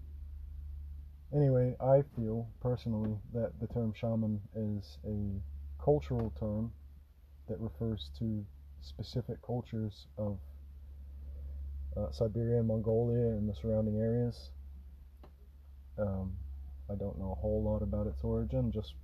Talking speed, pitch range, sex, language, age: 115 wpm, 70-115 Hz, male, English, 20-39